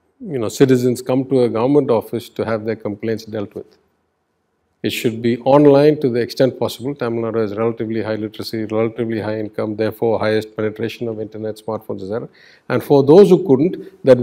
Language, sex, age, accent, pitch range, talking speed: English, male, 50-69, Indian, 110-135 Hz, 185 wpm